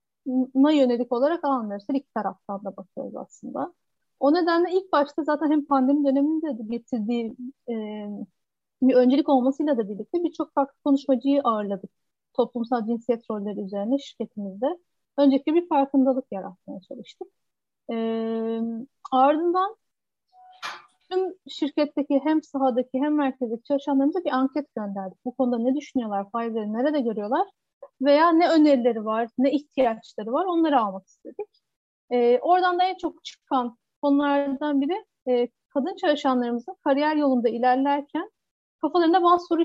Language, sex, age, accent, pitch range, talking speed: Turkish, female, 30-49, native, 235-305 Hz, 125 wpm